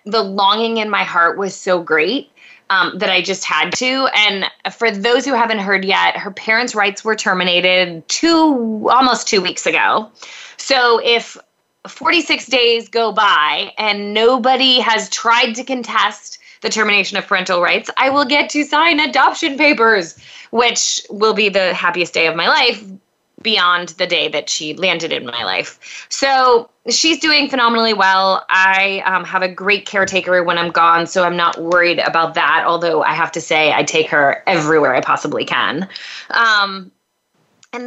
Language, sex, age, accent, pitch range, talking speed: English, female, 20-39, American, 185-245 Hz, 170 wpm